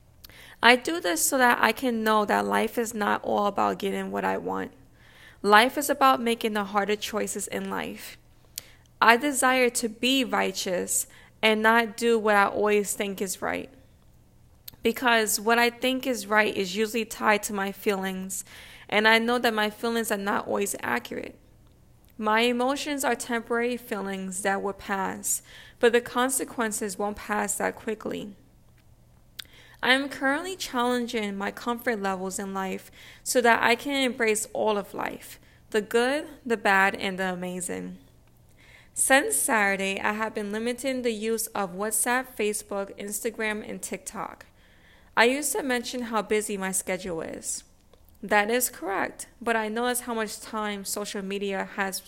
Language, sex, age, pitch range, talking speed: English, female, 20-39, 200-240 Hz, 160 wpm